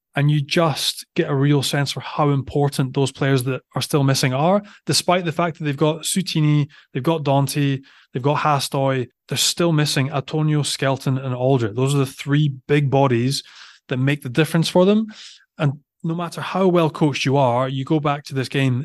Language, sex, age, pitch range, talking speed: English, male, 20-39, 130-155 Hz, 200 wpm